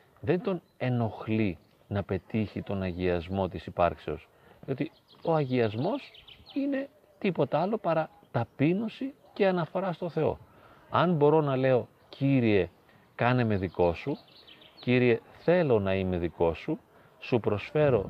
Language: Greek